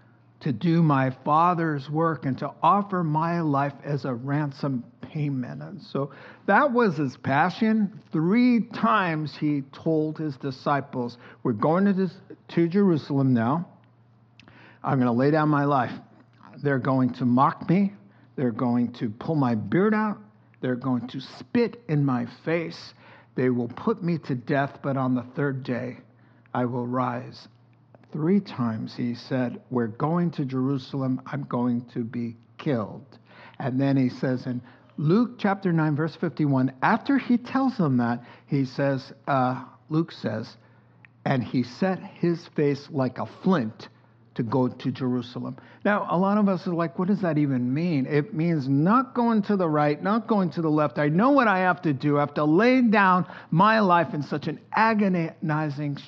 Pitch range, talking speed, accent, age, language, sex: 125-175 Hz, 170 wpm, American, 60-79, English, male